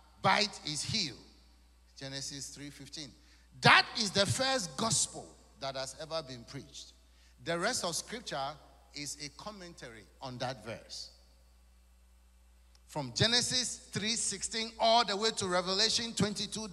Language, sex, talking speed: English, male, 120 wpm